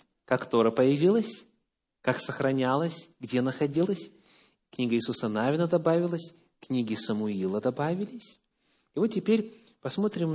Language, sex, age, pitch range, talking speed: English, male, 30-49, 125-200 Hz, 105 wpm